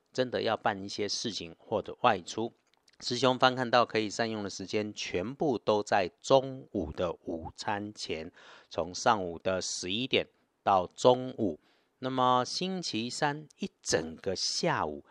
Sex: male